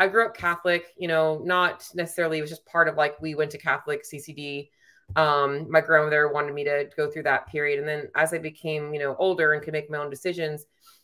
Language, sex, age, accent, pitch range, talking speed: English, female, 30-49, American, 140-160 Hz, 235 wpm